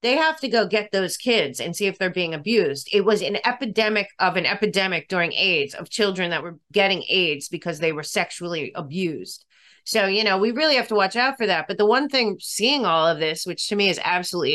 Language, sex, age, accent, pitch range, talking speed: English, female, 30-49, American, 185-240 Hz, 235 wpm